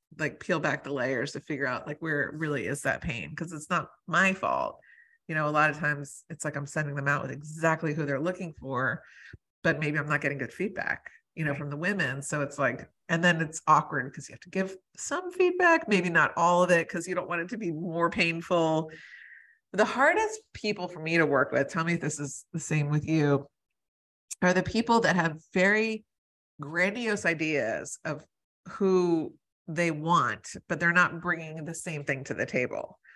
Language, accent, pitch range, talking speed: English, American, 150-175 Hz, 210 wpm